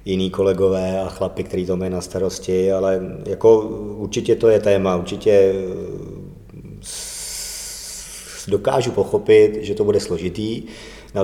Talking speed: 125 wpm